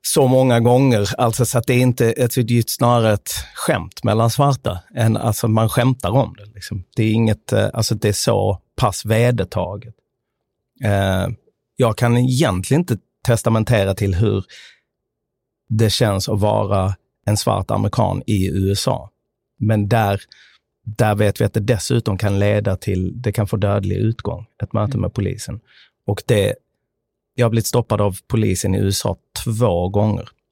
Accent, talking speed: native, 160 wpm